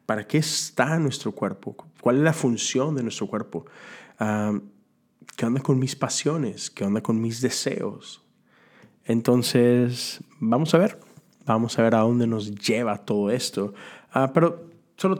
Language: Spanish